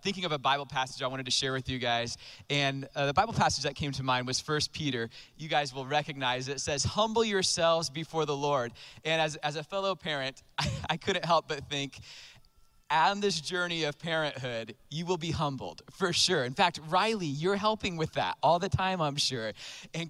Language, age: English, 20-39